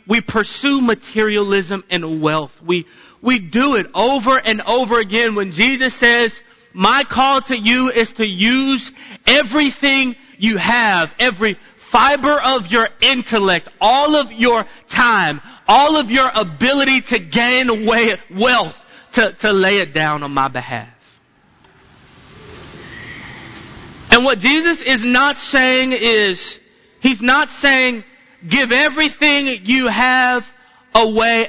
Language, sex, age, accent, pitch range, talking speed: English, male, 30-49, American, 175-255 Hz, 125 wpm